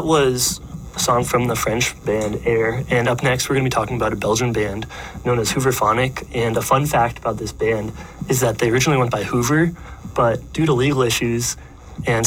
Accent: American